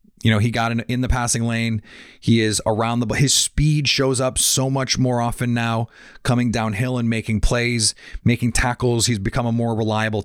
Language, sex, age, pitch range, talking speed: English, male, 30-49, 110-130 Hz, 200 wpm